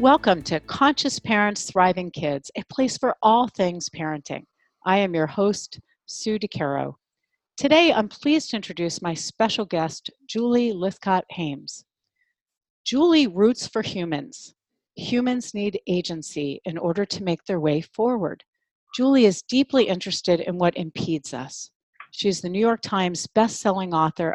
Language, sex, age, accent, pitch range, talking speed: English, female, 40-59, American, 165-220 Hz, 145 wpm